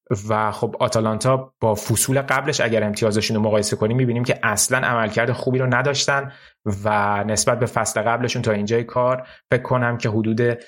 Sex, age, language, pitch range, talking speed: male, 20-39, Persian, 105-130 Hz, 175 wpm